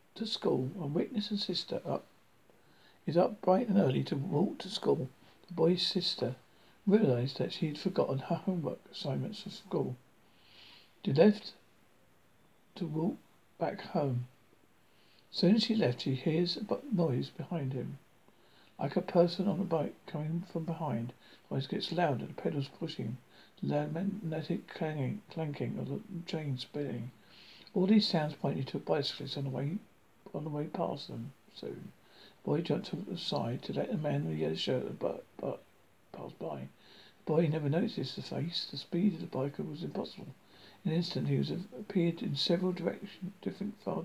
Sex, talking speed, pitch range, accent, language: male, 175 wpm, 140-185 Hz, British, English